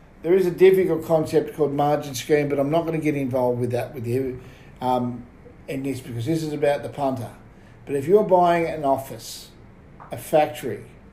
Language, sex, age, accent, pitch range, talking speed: English, male, 50-69, Australian, 125-160 Hz, 195 wpm